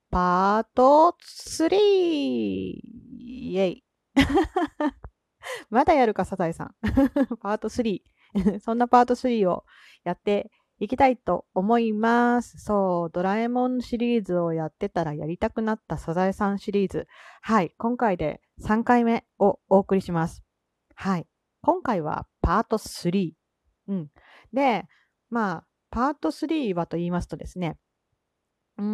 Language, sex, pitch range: Japanese, female, 185-255 Hz